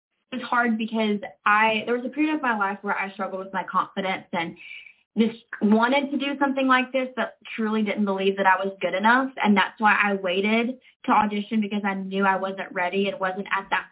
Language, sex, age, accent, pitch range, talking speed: English, female, 20-39, American, 190-245 Hz, 220 wpm